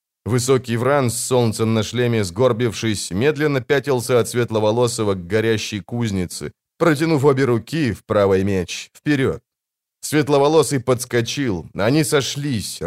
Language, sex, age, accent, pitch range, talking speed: Russian, male, 20-39, native, 105-135 Hz, 115 wpm